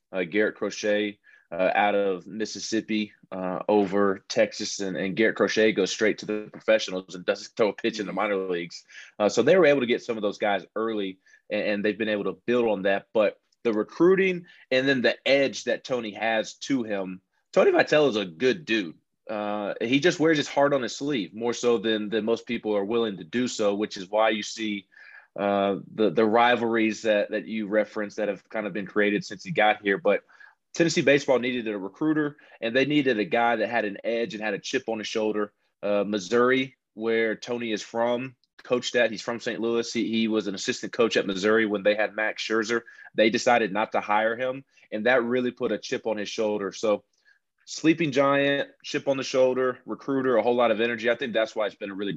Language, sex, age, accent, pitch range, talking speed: English, male, 20-39, American, 105-125 Hz, 220 wpm